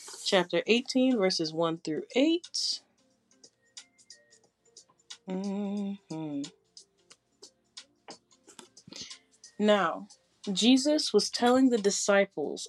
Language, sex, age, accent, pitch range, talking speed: English, female, 30-49, American, 165-210 Hz, 65 wpm